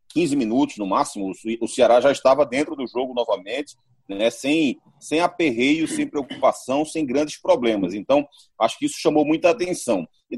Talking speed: 170 wpm